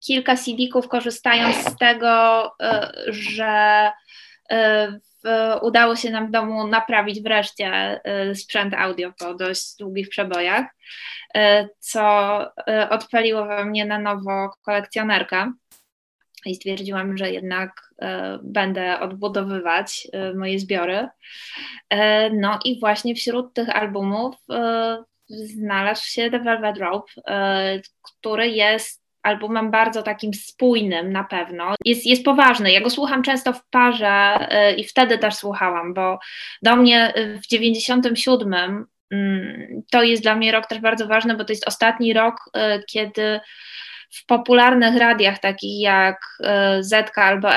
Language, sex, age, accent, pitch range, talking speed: Polish, female, 20-39, native, 195-230 Hz, 115 wpm